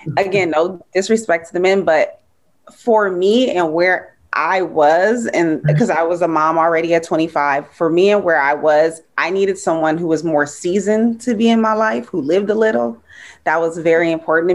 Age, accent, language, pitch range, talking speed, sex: 20-39, American, English, 155-195 Hz, 200 wpm, female